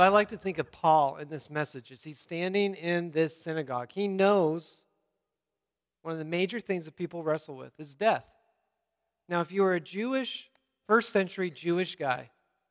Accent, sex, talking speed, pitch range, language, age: American, male, 180 wpm, 140-180 Hz, English, 40-59